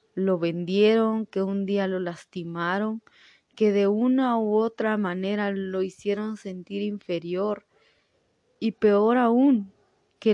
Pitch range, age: 190-225 Hz, 20-39